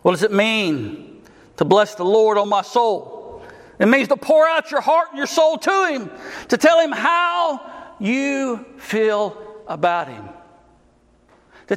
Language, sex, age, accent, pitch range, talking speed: English, male, 60-79, American, 210-310 Hz, 165 wpm